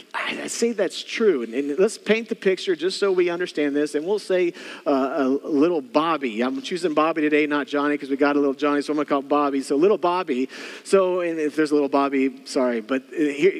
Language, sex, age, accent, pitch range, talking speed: English, male, 40-59, American, 175-210 Hz, 230 wpm